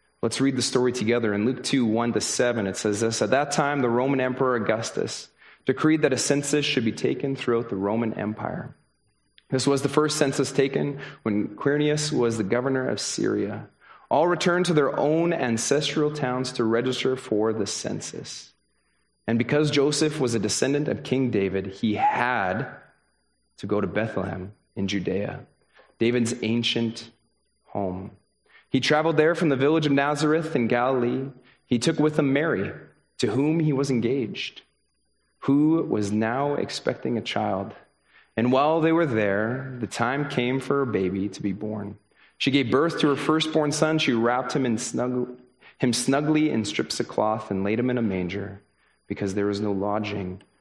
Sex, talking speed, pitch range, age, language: male, 170 wpm, 105-140 Hz, 30-49, English